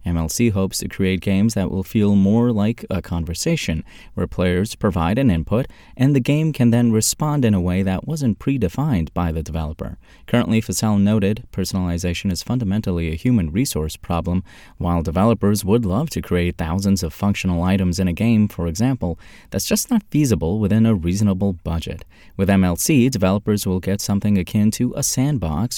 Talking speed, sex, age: 175 wpm, male, 30-49